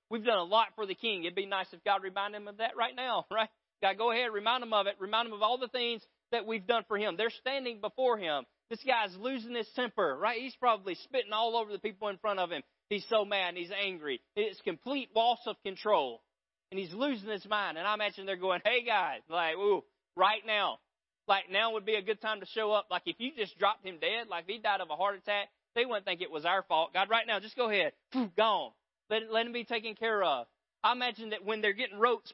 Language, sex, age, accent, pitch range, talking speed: English, male, 30-49, American, 185-225 Hz, 255 wpm